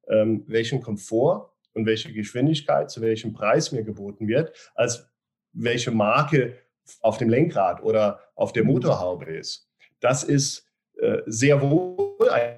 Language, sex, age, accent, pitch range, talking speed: German, male, 40-59, German, 115-150 Hz, 130 wpm